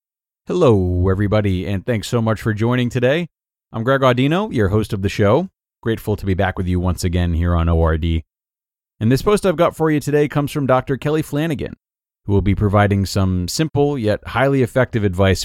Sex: male